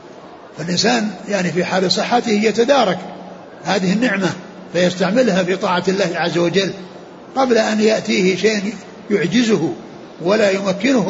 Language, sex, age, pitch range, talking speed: Arabic, male, 60-79, 180-225 Hz, 115 wpm